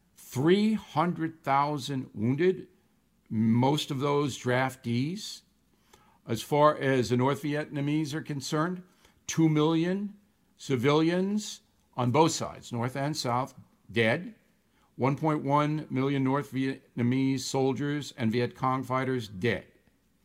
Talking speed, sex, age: 100 wpm, male, 60-79